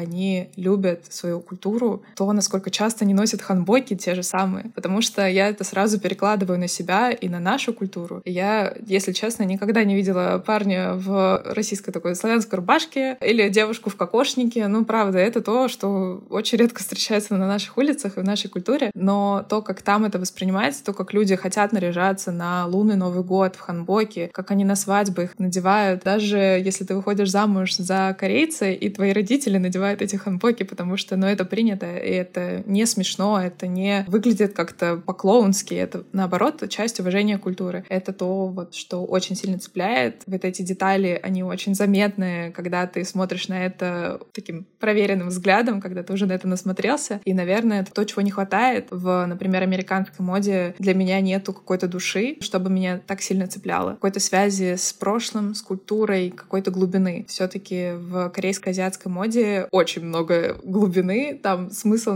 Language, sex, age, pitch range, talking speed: Russian, female, 20-39, 185-210 Hz, 170 wpm